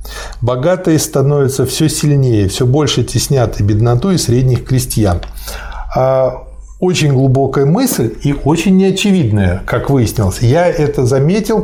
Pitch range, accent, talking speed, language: 115-155 Hz, native, 115 wpm, Russian